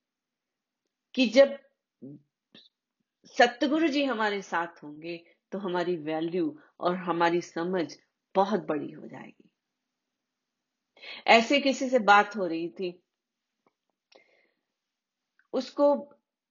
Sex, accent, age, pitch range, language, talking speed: female, native, 30-49, 170-250 Hz, Hindi, 90 wpm